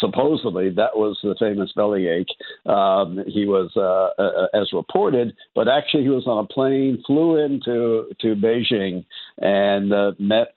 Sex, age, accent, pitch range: male, 60-79, American, 100-125 Hz